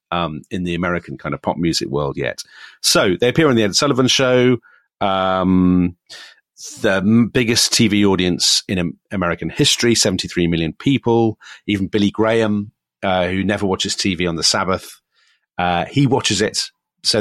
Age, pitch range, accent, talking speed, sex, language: 40-59, 90-115 Hz, British, 155 wpm, male, English